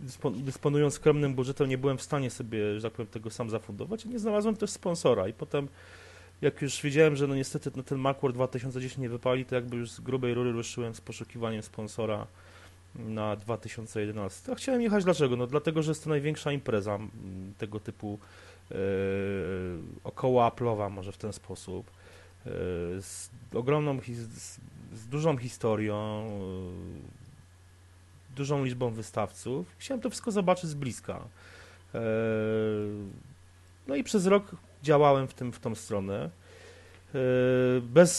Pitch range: 100-140 Hz